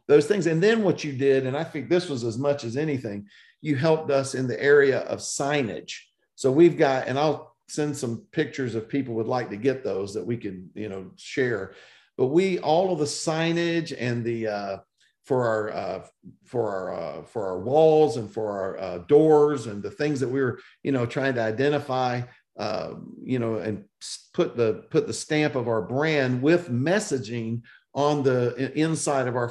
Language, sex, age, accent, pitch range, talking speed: English, male, 50-69, American, 115-145 Hz, 200 wpm